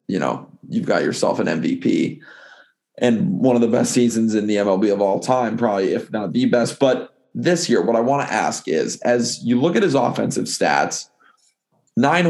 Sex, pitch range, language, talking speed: male, 115-160 Hz, English, 200 wpm